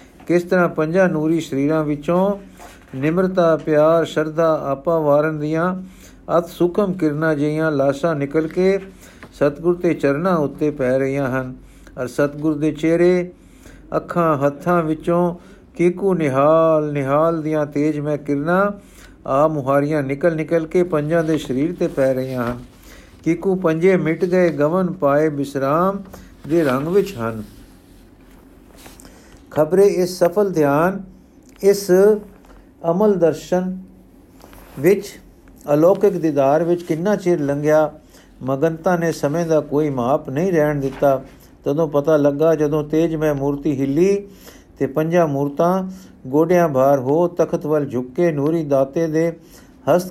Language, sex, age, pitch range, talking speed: Punjabi, male, 50-69, 145-175 Hz, 125 wpm